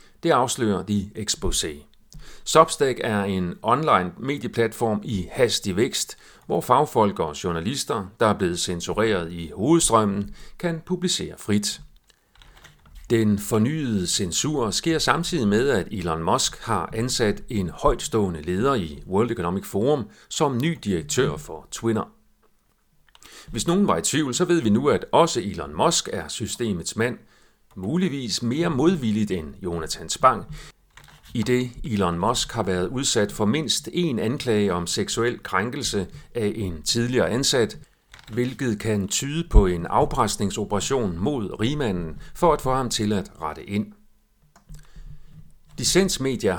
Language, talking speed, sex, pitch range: Danish, 135 wpm, male, 100-135 Hz